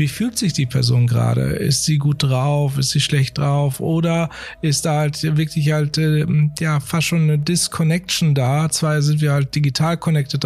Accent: German